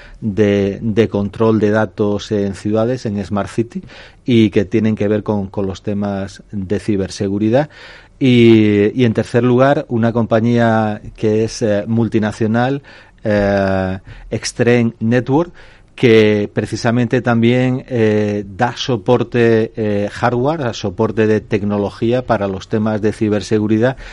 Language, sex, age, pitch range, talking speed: Spanish, male, 40-59, 105-115 Hz, 125 wpm